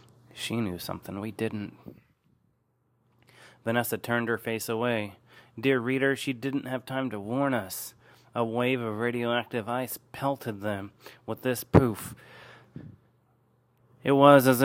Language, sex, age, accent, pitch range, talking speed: English, male, 30-49, American, 120-140 Hz, 130 wpm